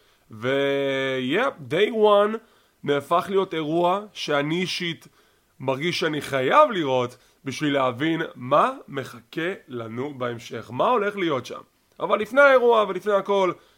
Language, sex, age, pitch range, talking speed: English, male, 30-49, 145-195 Hz, 110 wpm